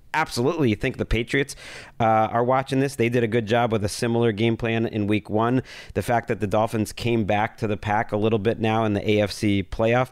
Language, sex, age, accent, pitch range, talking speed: English, male, 40-59, American, 105-125 Hz, 235 wpm